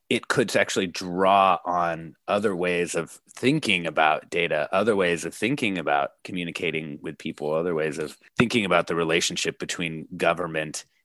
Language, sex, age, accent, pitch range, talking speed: English, male, 30-49, American, 90-135 Hz, 150 wpm